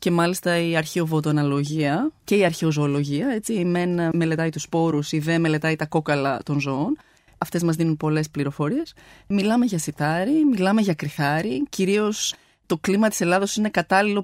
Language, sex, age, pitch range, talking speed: Greek, female, 20-39, 155-195 Hz, 155 wpm